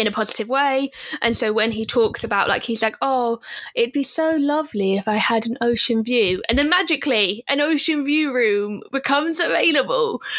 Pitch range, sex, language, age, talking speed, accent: 215-280 Hz, female, English, 10-29, 190 wpm, British